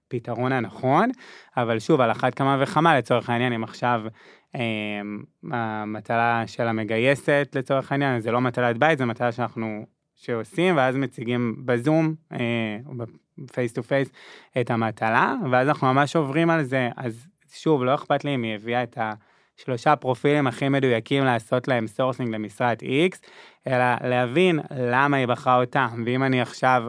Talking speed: 150 wpm